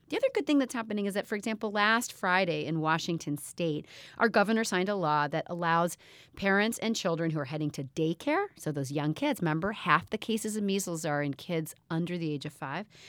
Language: English